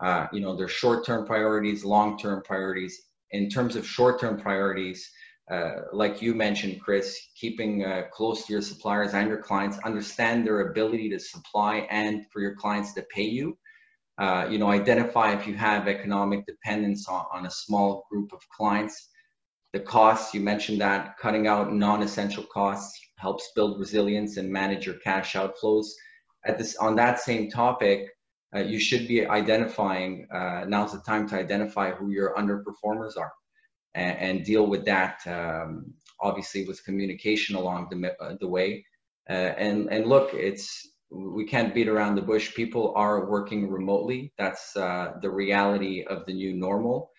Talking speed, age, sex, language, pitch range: 165 wpm, 20-39, male, English, 100-110 Hz